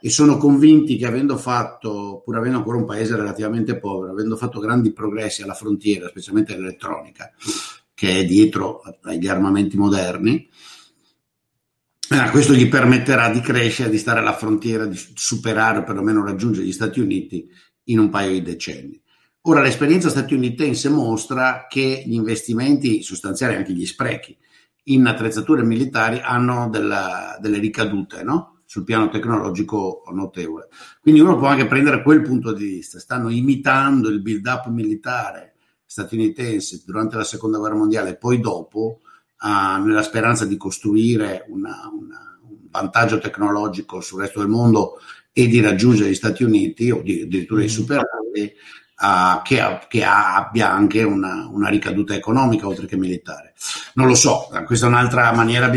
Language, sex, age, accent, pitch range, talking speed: Italian, male, 60-79, native, 105-130 Hz, 150 wpm